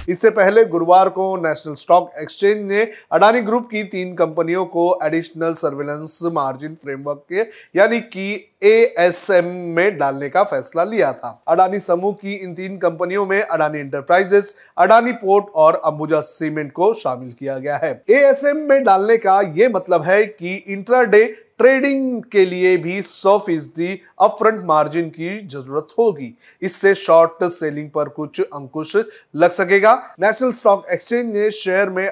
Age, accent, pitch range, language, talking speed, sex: 30-49, native, 160-205 Hz, Hindi, 150 wpm, male